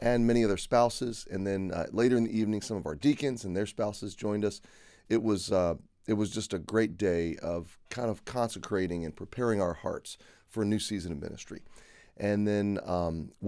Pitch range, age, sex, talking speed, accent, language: 95-110 Hz, 30-49, male, 205 wpm, American, English